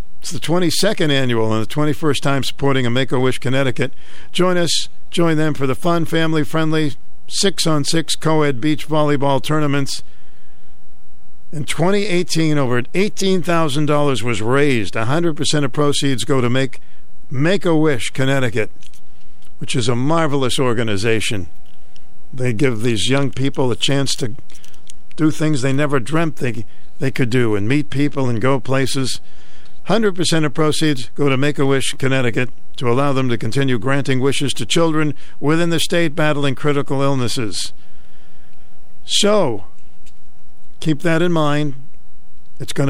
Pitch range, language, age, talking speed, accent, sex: 125-155 Hz, English, 60-79, 140 wpm, American, male